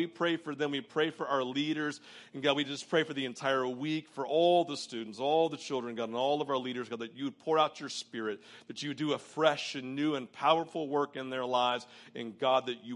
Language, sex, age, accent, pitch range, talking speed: English, male, 40-59, American, 125-155 Hz, 265 wpm